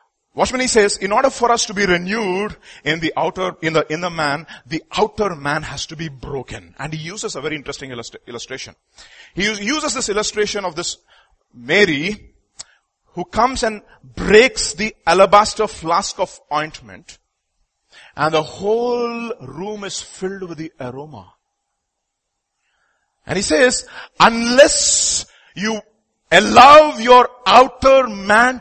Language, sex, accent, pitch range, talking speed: English, male, Indian, 155-225 Hz, 140 wpm